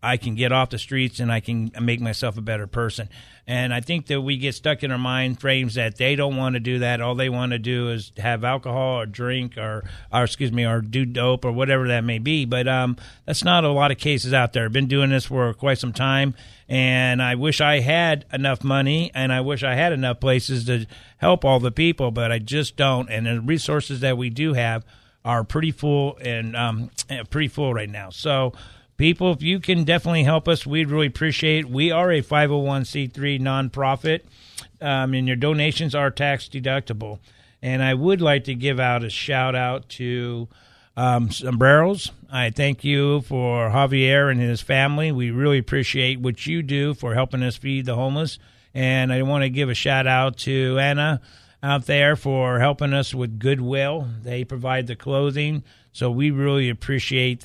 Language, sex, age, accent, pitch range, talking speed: English, male, 50-69, American, 120-140 Hz, 200 wpm